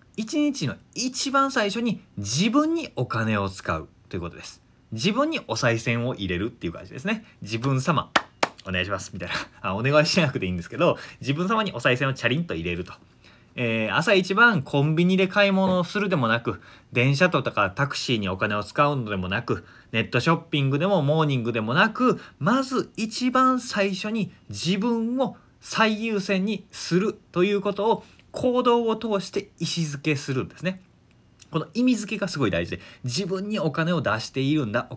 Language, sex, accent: Japanese, male, native